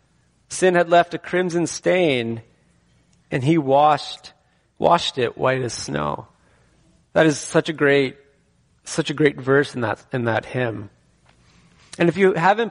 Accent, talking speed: American, 150 wpm